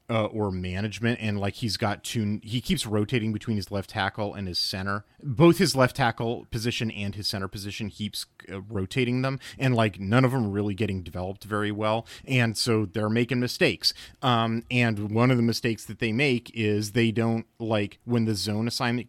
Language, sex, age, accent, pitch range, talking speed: English, male, 30-49, American, 100-125 Hz, 200 wpm